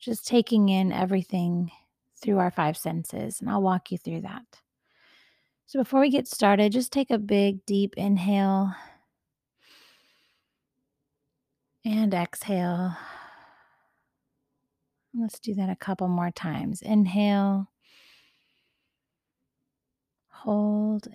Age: 30-49